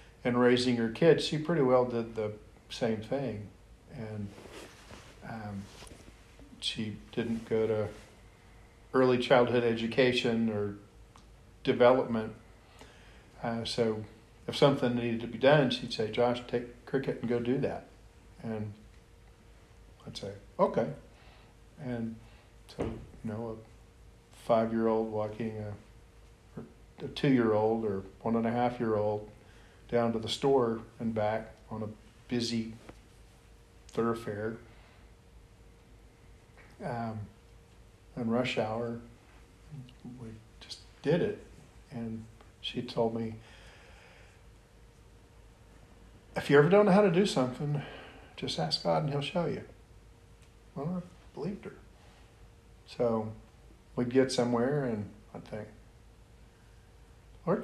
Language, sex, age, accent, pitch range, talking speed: English, male, 50-69, American, 105-120 Hz, 115 wpm